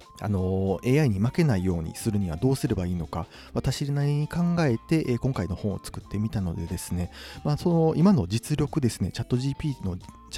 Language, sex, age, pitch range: Japanese, male, 40-59, 95-135 Hz